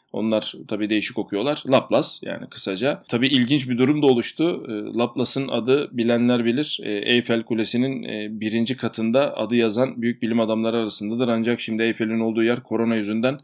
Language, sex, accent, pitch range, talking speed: Turkish, male, native, 110-135 Hz, 150 wpm